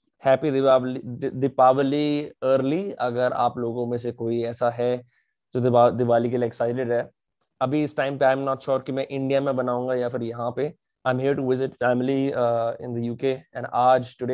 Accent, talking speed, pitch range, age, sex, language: native, 180 wpm, 120-140 Hz, 20-39, male, Hindi